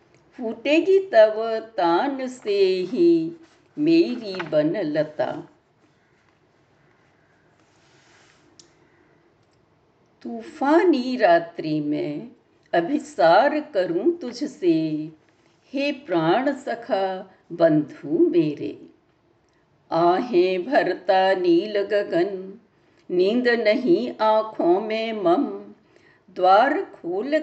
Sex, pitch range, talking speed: female, 210-325 Hz, 65 wpm